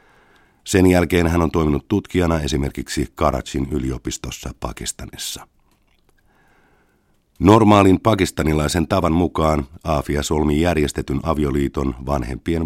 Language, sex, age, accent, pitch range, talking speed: Finnish, male, 50-69, native, 70-85 Hz, 90 wpm